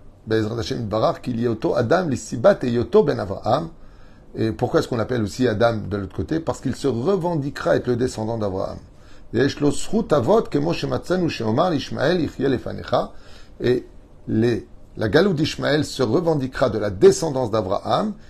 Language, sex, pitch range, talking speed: French, male, 105-140 Hz, 95 wpm